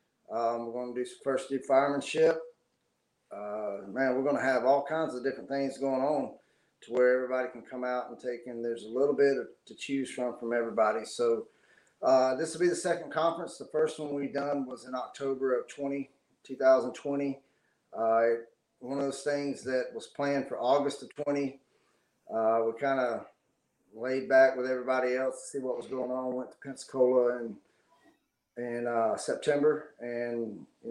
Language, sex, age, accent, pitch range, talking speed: English, male, 40-59, American, 125-145 Hz, 185 wpm